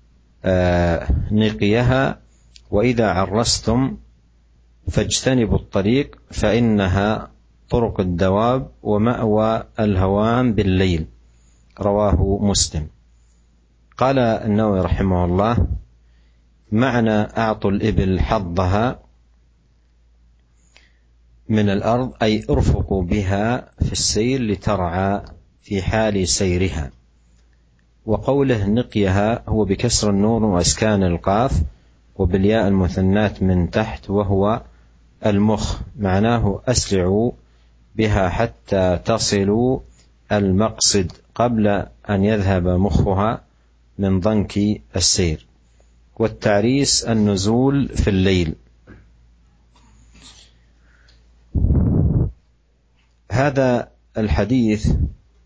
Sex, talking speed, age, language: male, 70 wpm, 50-69, Malay